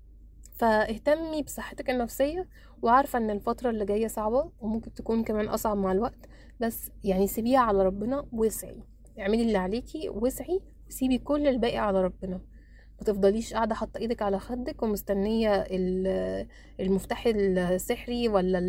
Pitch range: 200-245 Hz